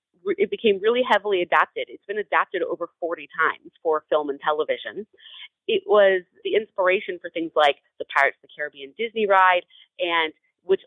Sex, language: female, English